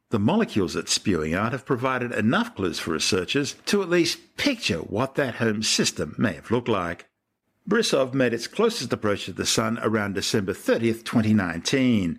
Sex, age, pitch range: male, 60-79, 105-145 Hz